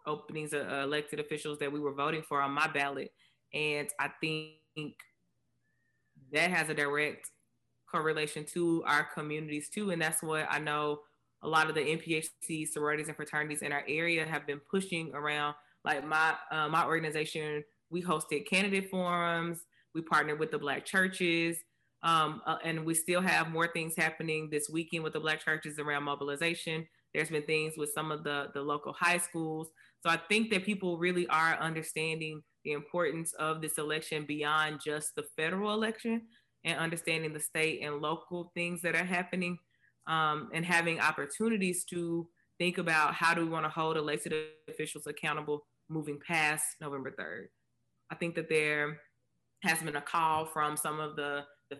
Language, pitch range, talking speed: English, 150-170 Hz, 170 wpm